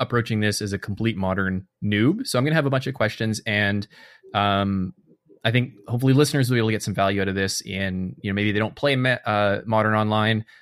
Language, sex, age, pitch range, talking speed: English, male, 20-39, 95-125 Hz, 245 wpm